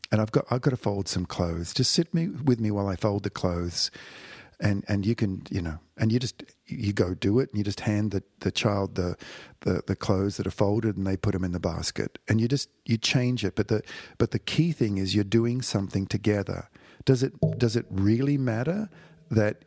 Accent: Australian